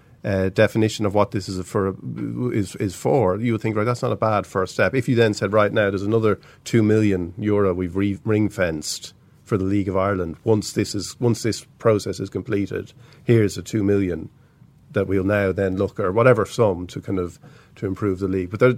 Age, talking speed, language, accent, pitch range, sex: 40-59, 220 wpm, English, Irish, 95-120 Hz, male